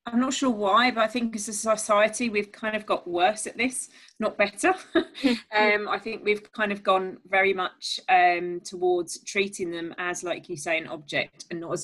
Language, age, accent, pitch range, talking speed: English, 30-49, British, 180-225 Hz, 210 wpm